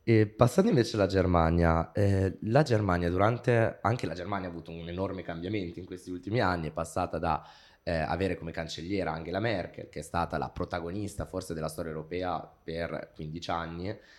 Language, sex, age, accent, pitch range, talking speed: Italian, male, 20-39, native, 85-100 Hz, 180 wpm